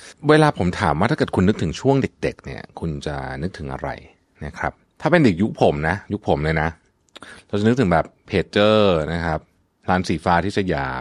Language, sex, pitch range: Thai, male, 80-115 Hz